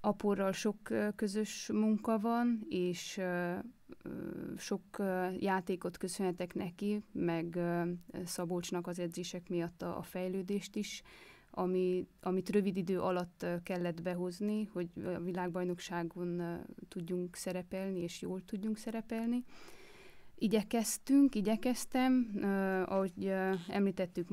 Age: 20-39